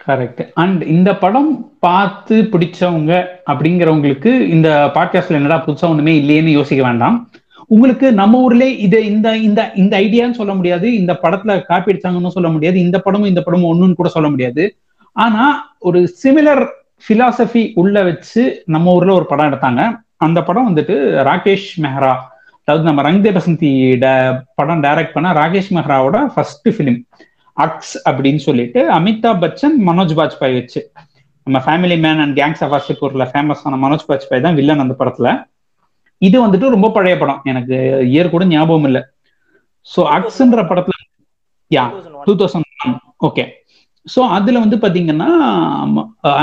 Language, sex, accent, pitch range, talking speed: Tamil, male, native, 145-215 Hz, 120 wpm